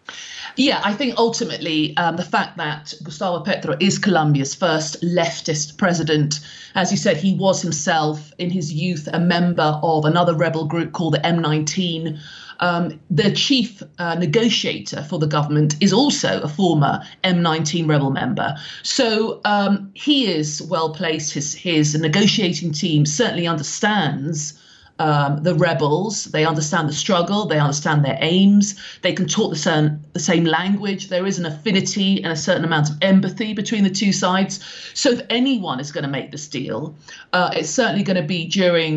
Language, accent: English, British